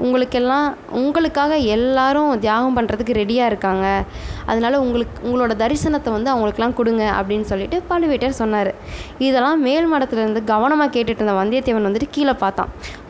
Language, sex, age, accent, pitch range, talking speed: Tamil, female, 20-39, native, 215-265 Hz, 125 wpm